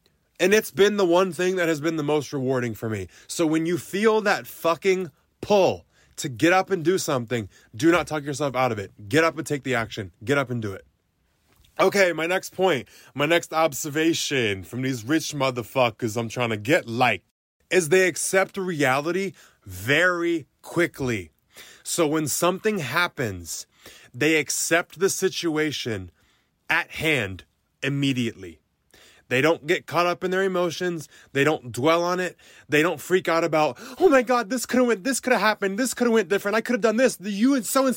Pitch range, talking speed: 130-195 Hz, 190 wpm